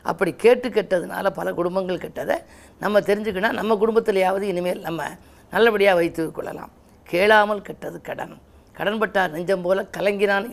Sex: female